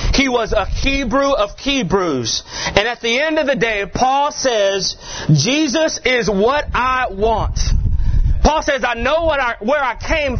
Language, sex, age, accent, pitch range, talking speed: English, male, 30-49, American, 195-290 Hz, 165 wpm